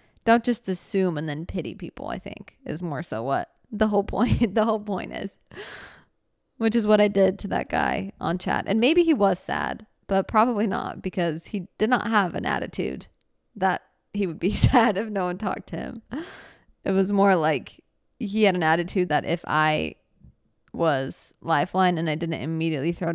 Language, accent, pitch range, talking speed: English, American, 180-220 Hz, 190 wpm